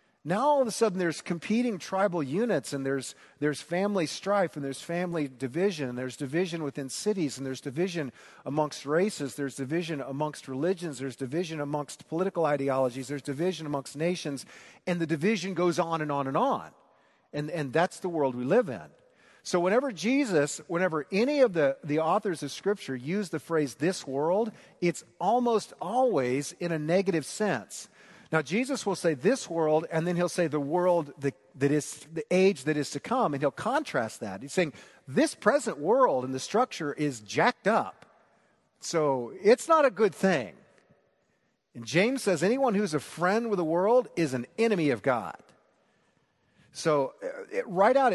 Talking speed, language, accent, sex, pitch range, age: 175 wpm, English, American, male, 145-200 Hz, 50-69